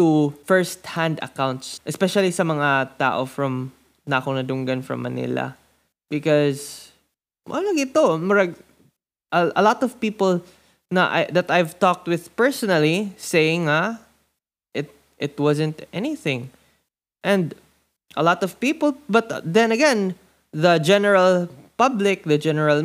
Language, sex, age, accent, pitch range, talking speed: Filipino, male, 20-39, native, 145-200 Hz, 110 wpm